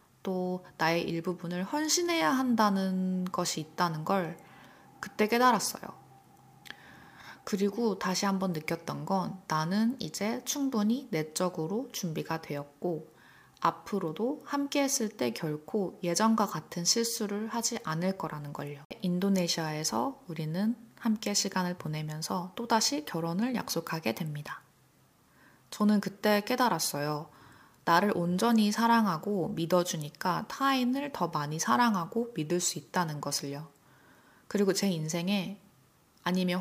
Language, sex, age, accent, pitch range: Korean, female, 20-39, native, 165-220 Hz